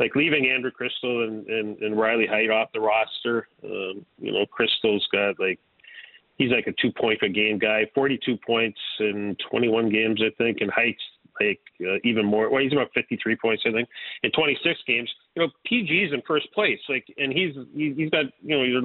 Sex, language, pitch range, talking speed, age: male, English, 110-135 Hz, 205 wpm, 40-59